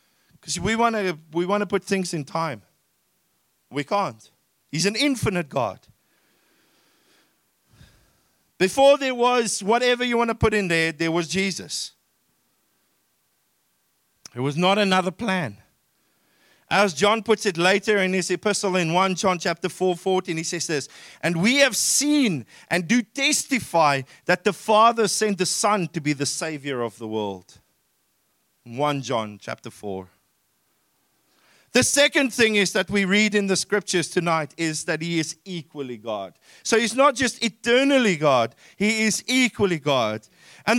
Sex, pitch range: male, 170-225 Hz